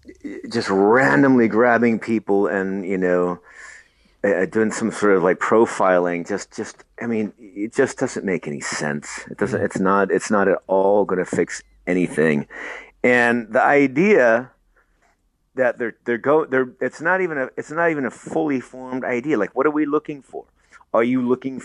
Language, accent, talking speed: English, American, 175 wpm